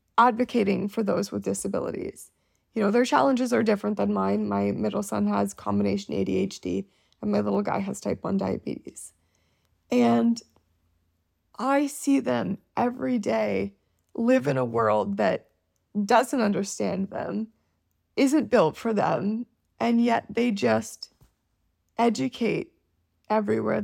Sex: female